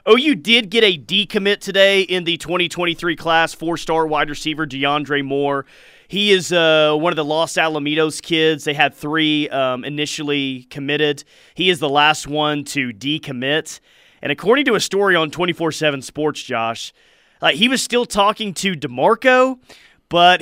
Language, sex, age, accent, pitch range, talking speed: English, male, 30-49, American, 140-175 Hz, 160 wpm